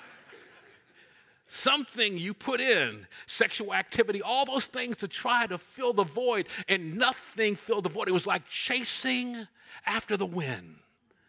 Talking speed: 145 wpm